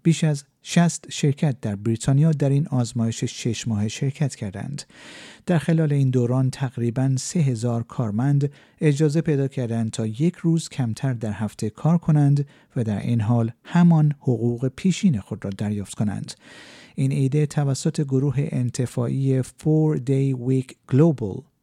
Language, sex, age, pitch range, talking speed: Persian, male, 50-69, 115-150 Hz, 145 wpm